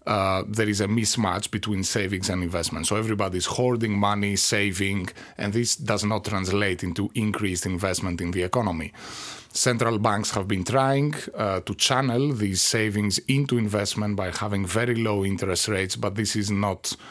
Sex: male